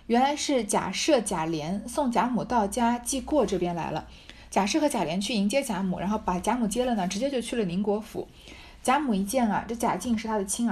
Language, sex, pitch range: Chinese, female, 180-235 Hz